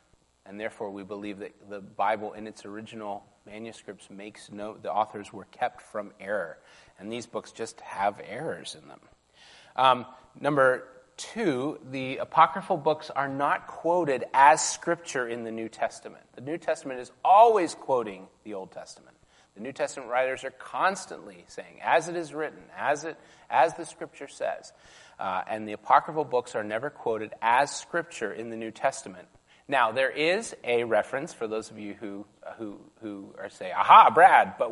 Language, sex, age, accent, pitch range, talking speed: English, male, 30-49, American, 105-140 Hz, 170 wpm